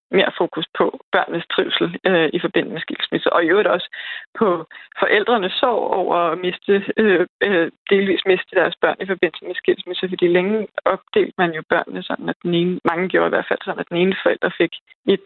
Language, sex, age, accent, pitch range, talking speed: Danish, female, 20-39, native, 170-205 Hz, 200 wpm